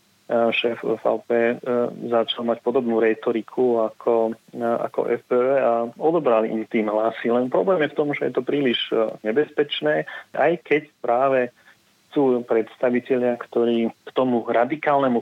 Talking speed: 130 wpm